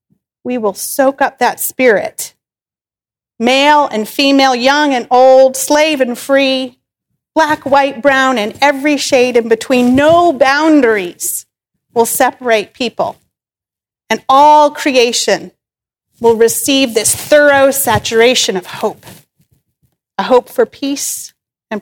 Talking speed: 120 wpm